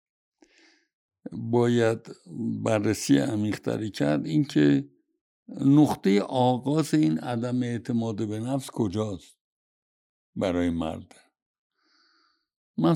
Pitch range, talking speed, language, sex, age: 105-135 Hz, 75 wpm, Persian, male, 60-79